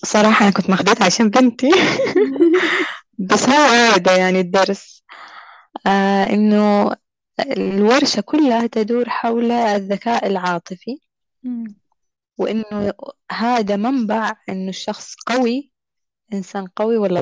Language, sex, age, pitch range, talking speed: Arabic, female, 20-39, 195-235 Hz, 100 wpm